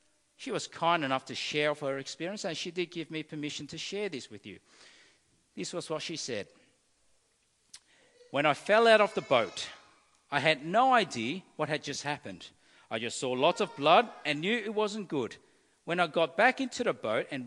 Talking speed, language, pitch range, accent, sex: 205 wpm, English, 130-190 Hz, Australian, male